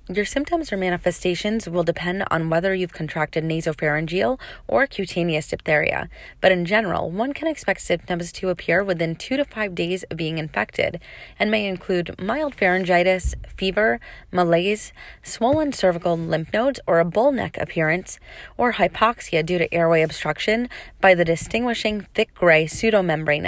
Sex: female